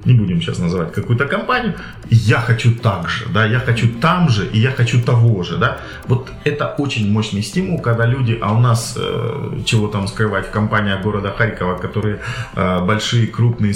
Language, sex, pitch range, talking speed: Russian, male, 105-125 Hz, 185 wpm